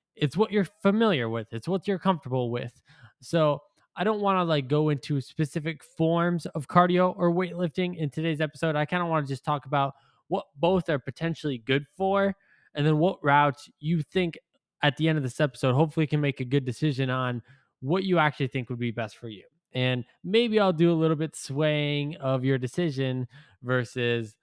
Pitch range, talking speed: 130-165 Hz, 200 wpm